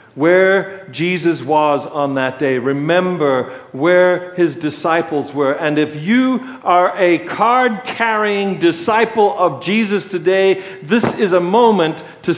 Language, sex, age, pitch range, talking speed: English, male, 50-69, 155-220 Hz, 130 wpm